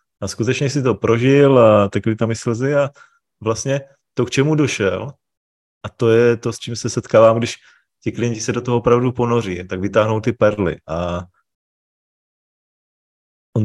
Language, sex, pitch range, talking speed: Czech, male, 105-120 Hz, 165 wpm